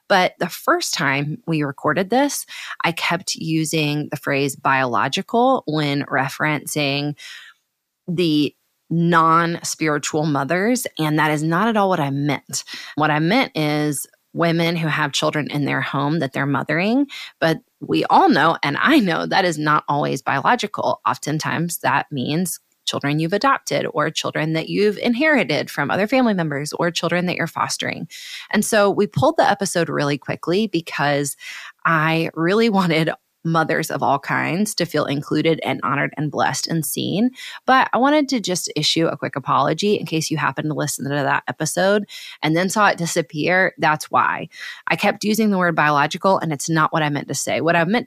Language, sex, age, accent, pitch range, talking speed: English, female, 20-39, American, 150-195 Hz, 175 wpm